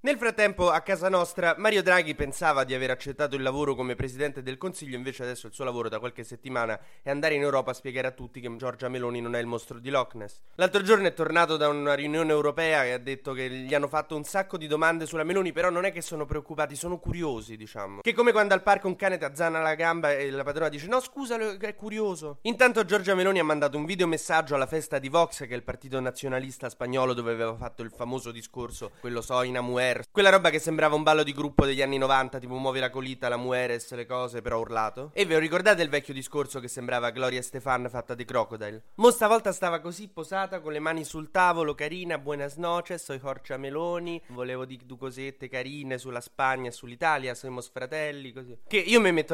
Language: Italian